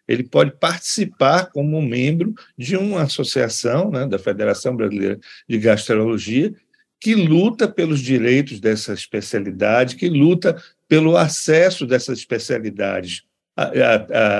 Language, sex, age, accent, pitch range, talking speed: Portuguese, male, 60-79, Brazilian, 120-170 Hz, 115 wpm